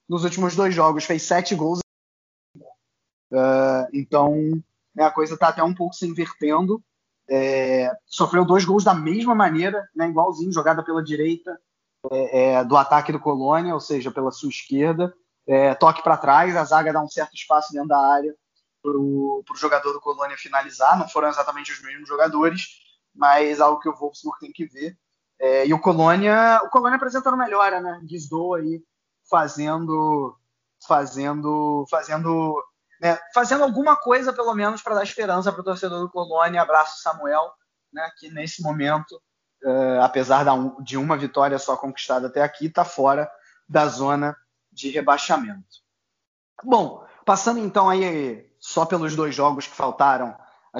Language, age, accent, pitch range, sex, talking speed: Portuguese, 20-39, Brazilian, 140-180 Hz, male, 155 wpm